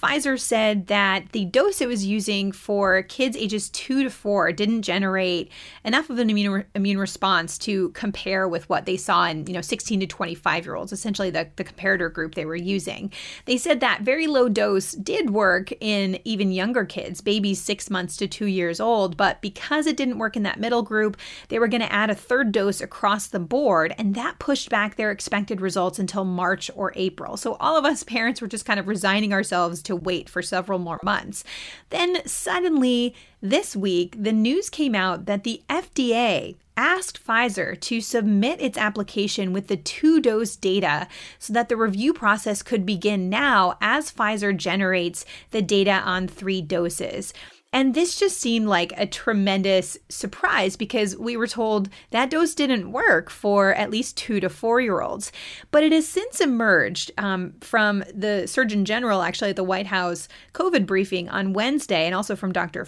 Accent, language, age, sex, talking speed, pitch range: American, English, 30-49, female, 185 wpm, 190-235 Hz